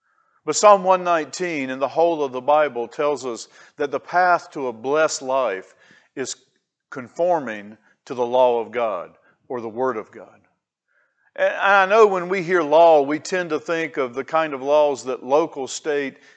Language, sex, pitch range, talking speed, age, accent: English, male, 130-170 Hz, 180 wpm, 50-69, American